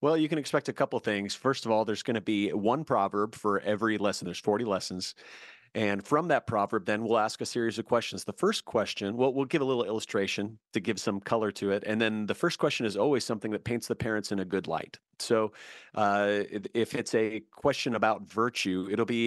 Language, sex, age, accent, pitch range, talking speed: English, male, 30-49, American, 100-120 Hz, 235 wpm